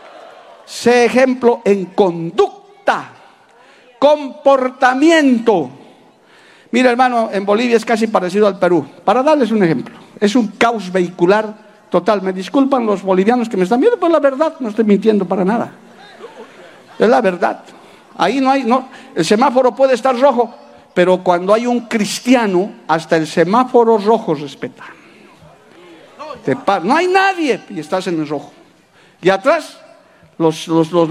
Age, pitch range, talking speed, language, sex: 60-79, 190-260 Hz, 145 wpm, Spanish, male